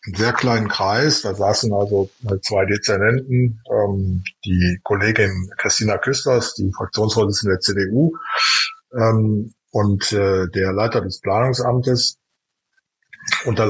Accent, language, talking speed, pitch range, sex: German, German, 115 wpm, 100-120 Hz, male